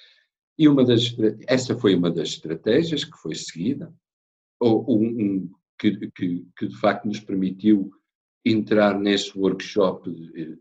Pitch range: 100-125 Hz